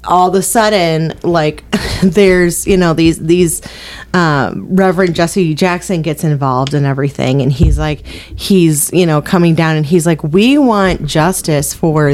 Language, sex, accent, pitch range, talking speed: English, female, American, 155-200 Hz, 165 wpm